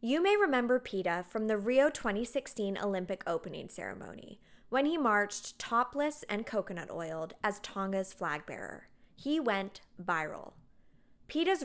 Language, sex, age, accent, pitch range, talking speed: English, female, 20-39, American, 195-265 Hz, 135 wpm